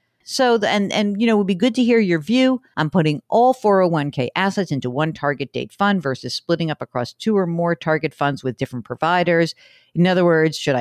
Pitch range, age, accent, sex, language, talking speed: 150-220 Hz, 50-69, American, female, English, 215 wpm